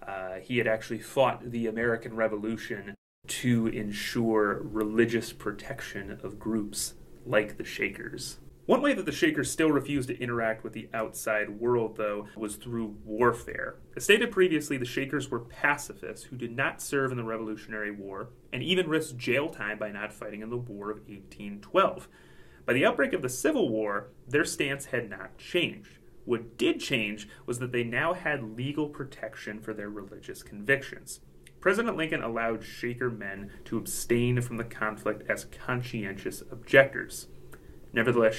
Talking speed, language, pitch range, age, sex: 160 wpm, English, 105-130 Hz, 30-49, male